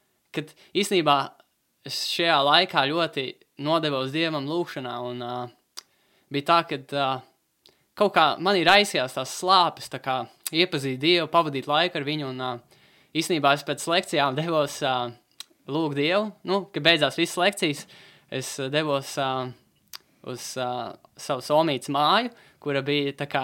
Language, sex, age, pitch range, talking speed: Russian, male, 20-39, 130-160 Hz, 130 wpm